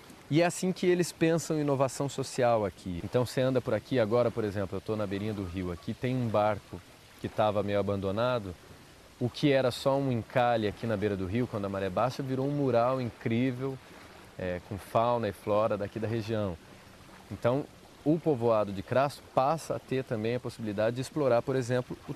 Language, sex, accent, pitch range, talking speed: Portuguese, male, Brazilian, 105-135 Hz, 200 wpm